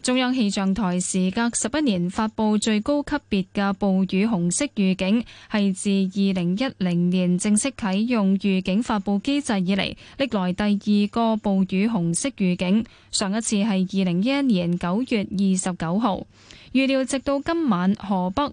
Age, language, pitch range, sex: 10-29, Chinese, 190-245 Hz, female